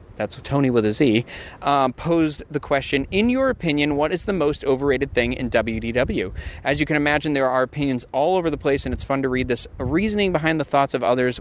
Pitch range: 115-150 Hz